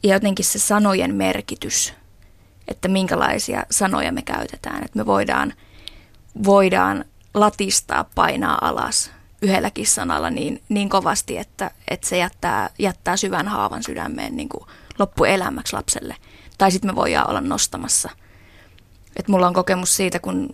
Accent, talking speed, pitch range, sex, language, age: native, 135 wpm, 190-225 Hz, female, Finnish, 20-39